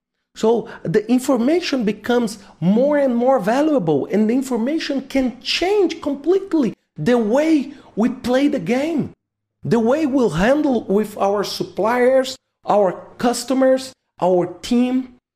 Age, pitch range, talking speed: 40-59, 195-265 Hz, 120 wpm